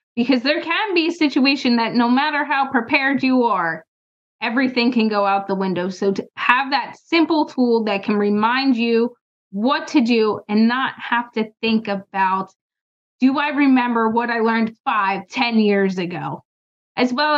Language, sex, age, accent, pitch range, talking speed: English, female, 20-39, American, 220-255 Hz, 175 wpm